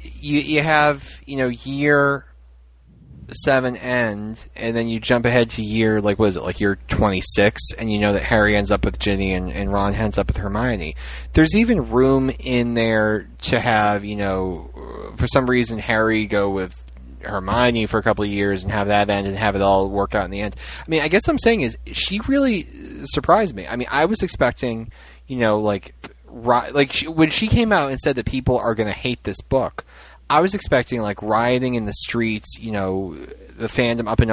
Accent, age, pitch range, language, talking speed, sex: American, 30-49, 95-125 Hz, English, 215 wpm, male